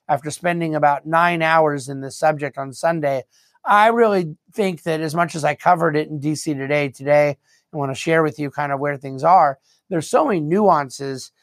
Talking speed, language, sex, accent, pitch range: 205 wpm, English, male, American, 140-165 Hz